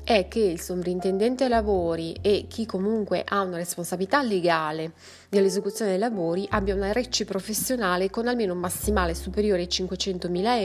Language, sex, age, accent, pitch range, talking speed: Italian, female, 20-39, native, 180-210 Hz, 145 wpm